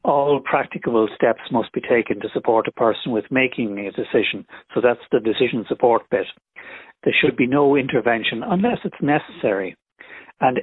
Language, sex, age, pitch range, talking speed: English, male, 60-79, 90-120 Hz, 165 wpm